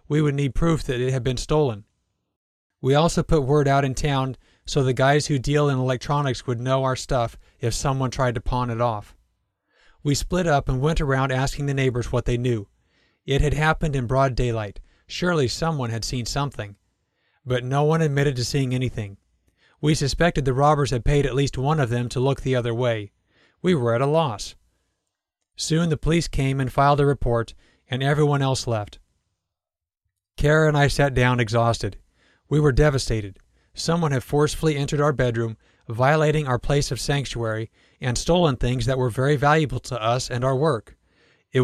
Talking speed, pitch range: 185 wpm, 120-145 Hz